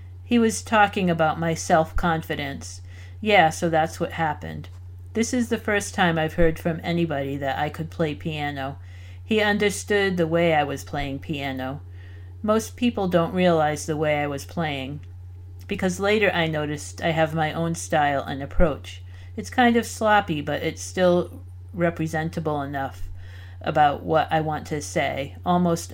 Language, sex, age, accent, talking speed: English, female, 50-69, American, 160 wpm